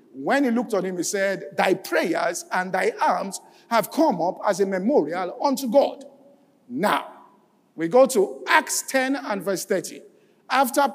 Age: 50-69